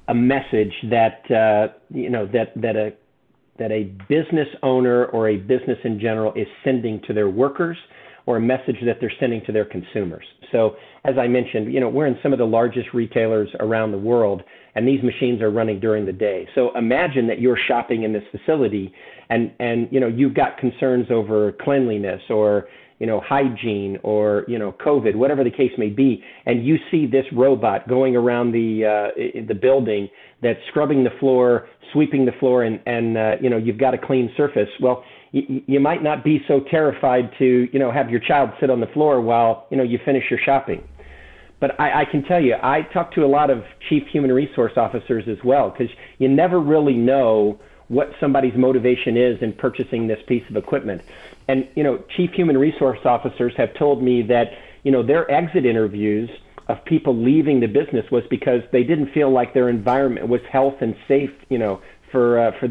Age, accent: 50-69, American